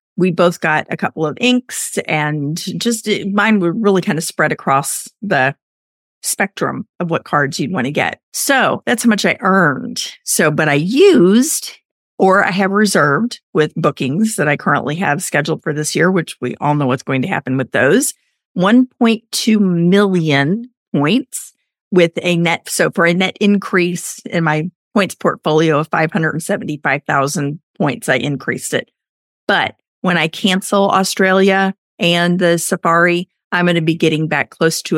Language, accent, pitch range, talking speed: English, American, 160-200 Hz, 165 wpm